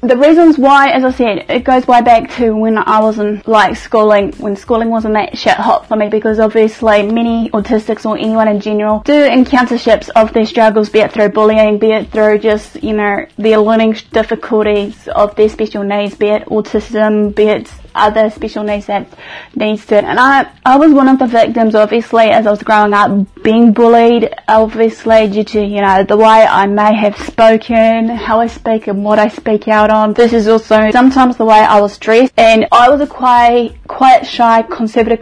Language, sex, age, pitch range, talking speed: English, female, 20-39, 210-235 Hz, 205 wpm